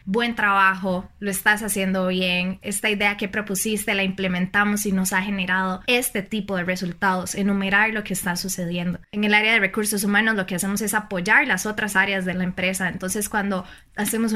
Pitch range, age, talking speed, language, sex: 190-220 Hz, 20-39, 190 wpm, Spanish, female